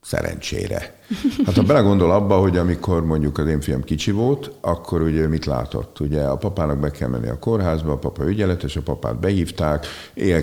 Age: 50-69